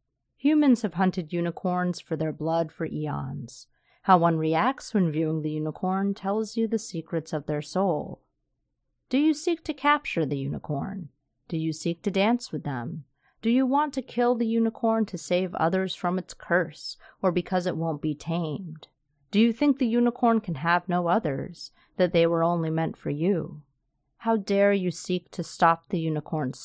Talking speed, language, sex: 180 wpm, English, female